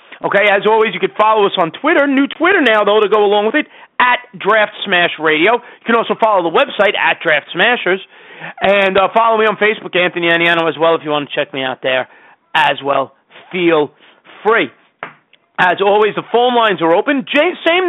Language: English